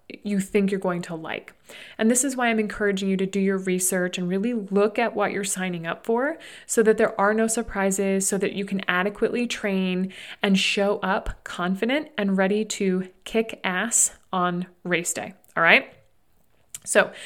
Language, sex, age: English, female, 30-49